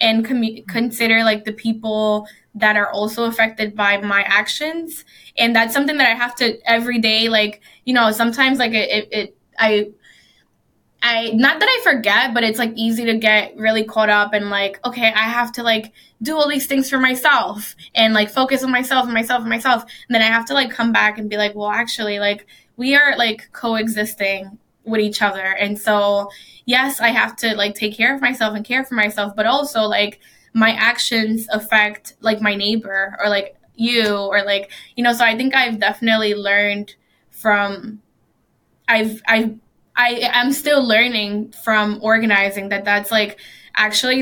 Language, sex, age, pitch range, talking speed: English, female, 10-29, 205-240 Hz, 190 wpm